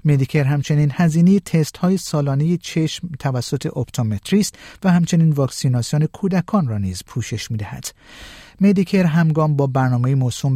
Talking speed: 130 wpm